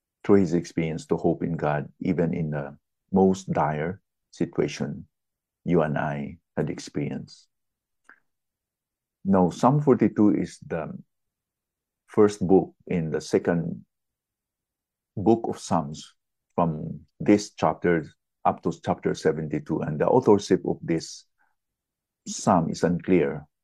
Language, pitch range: English, 80-95 Hz